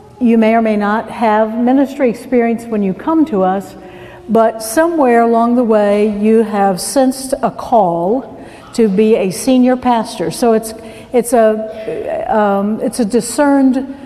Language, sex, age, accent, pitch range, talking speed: English, female, 60-79, American, 195-235 Hz, 155 wpm